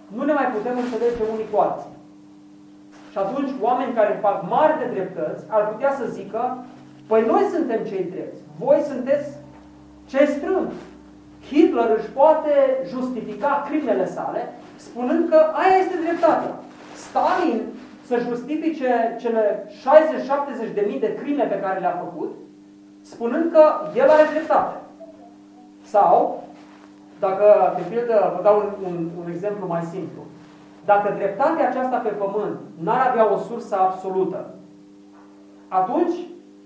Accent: native